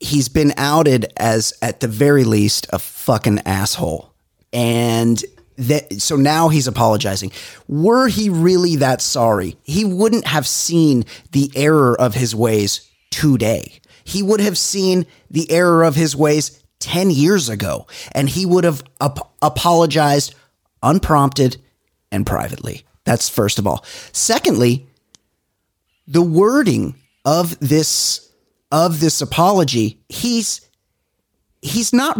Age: 30-49